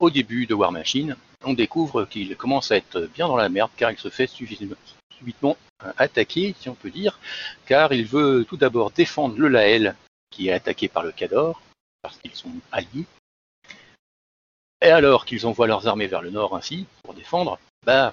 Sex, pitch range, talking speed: male, 90-140 Hz, 185 wpm